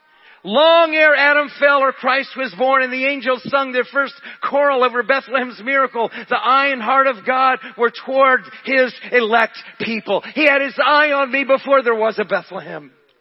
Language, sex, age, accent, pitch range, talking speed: English, male, 40-59, American, 225-270 Hz, 180 wpm